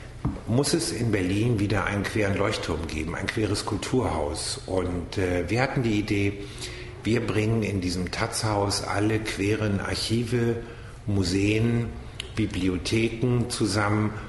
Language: German